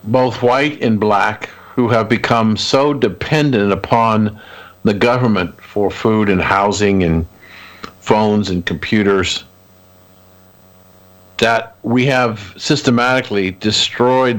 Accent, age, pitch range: American, 50-69, 95-120 Hz